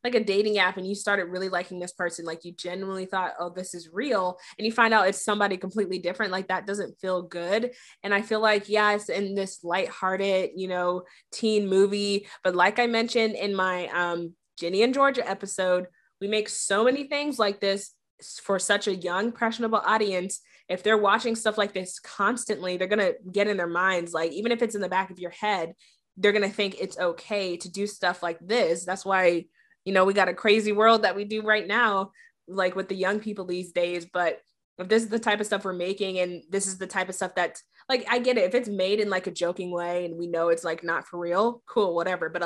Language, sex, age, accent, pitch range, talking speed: English, female, 20-39, American, 180-210 Hz, 235 wpm